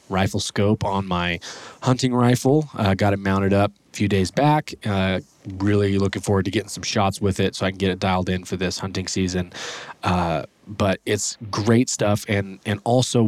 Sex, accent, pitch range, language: male, American, 95-110 Hz, English